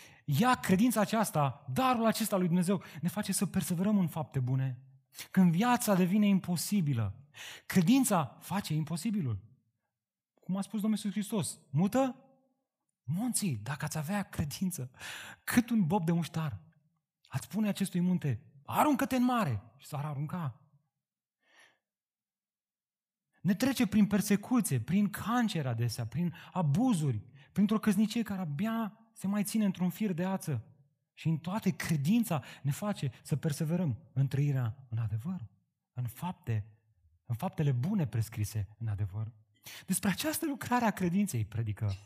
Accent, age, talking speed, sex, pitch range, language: native, 30-49, 130 wpm, male, 130-205 Hz, Romanian